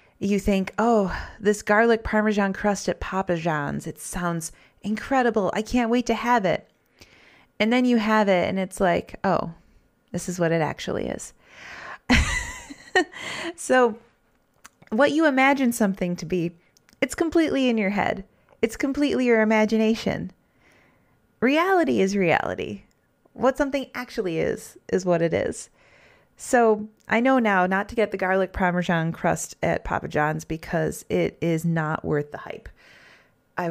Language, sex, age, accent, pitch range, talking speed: English, female, 30-49, American, 175-235 Hz, 150 wpm